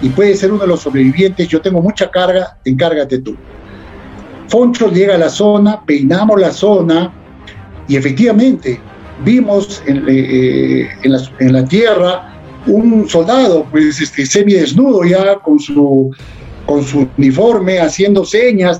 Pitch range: 135-195 Hz